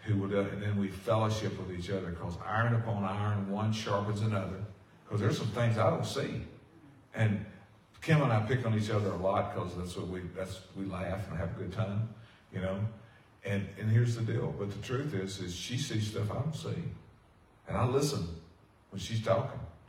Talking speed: 210 wpm